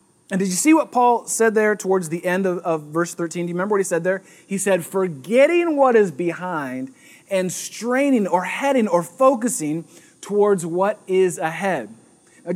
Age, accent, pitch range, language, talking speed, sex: 30-49, American, 165-210 Hz, English, 185 wpm, male